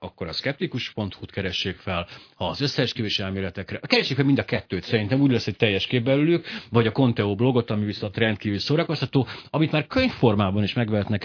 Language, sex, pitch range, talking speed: Hungarian, male, 100-125 Hz, 185 wpm